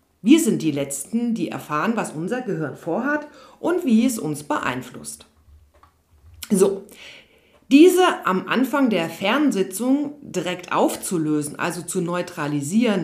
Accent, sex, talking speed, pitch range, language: German, female, 120 wpm, 155-235 Hz, German